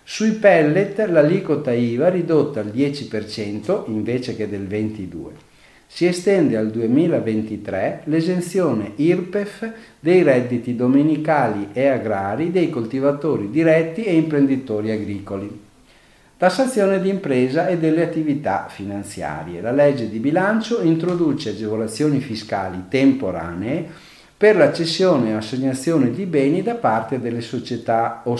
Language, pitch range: Italian, 110-155 Hz